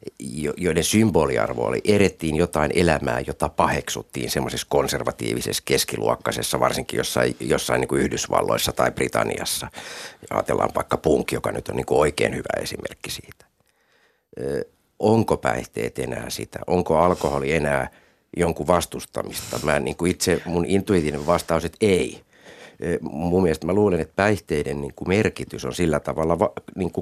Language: Finnish